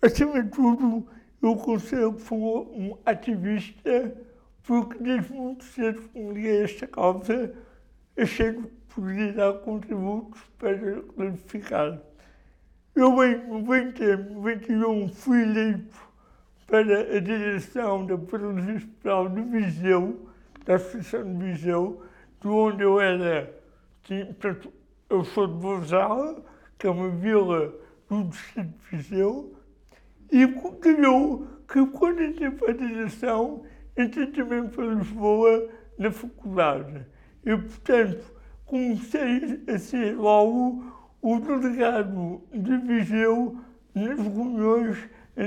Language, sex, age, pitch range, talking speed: Portuguese, male, 60-79, 195-240 Hz, 110 wpm